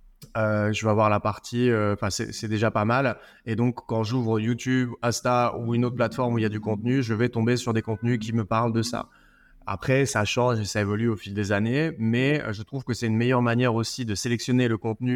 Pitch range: 110-125 Hz